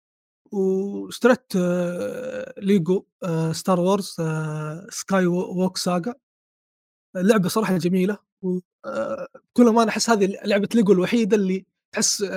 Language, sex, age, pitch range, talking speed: Arabic, male, 20-39, 180-210 Hz, 95 wpm